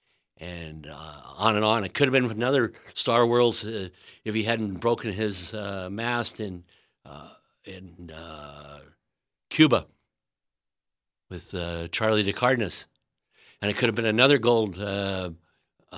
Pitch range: 95-120 Hz